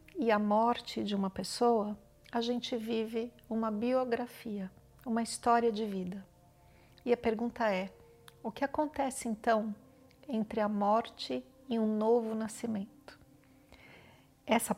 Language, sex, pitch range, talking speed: Portuguese, female, 210-245 Hz, 125 wpm